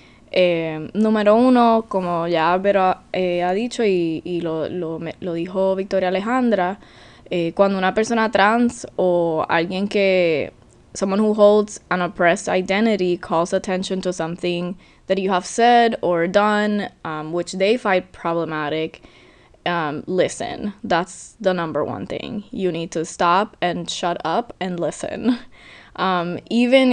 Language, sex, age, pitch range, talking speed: English, female, 20-39, 175-220 Hz, 145 wpm